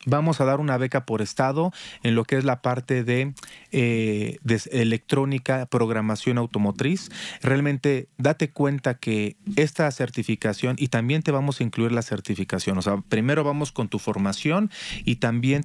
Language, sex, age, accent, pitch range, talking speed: Spanish, male, 40-59, Mexican, 115-145 Hz, 160 wpm